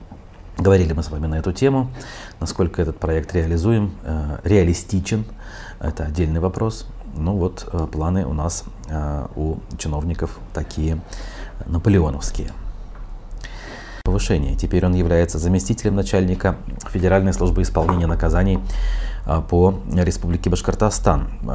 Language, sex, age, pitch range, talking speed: Russian, male, 30-49, 85-105 Hz, 105 wpm